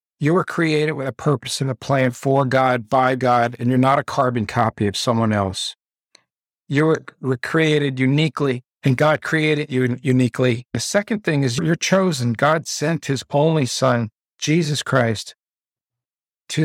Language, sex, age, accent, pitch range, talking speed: English, male, 50-69, American, 125-150 Hz, 160 wpm